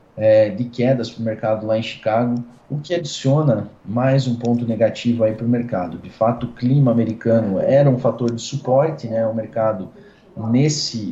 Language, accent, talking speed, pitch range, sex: Portuguese, Brazilian, 175 wpm, 110-130 Hz, male